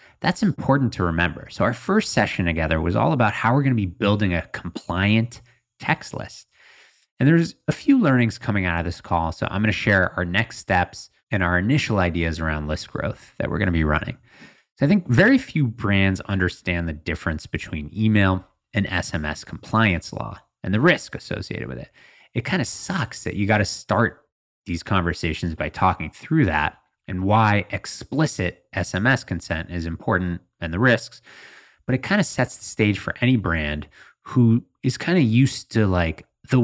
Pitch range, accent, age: 85-120 Hz, American, 30-49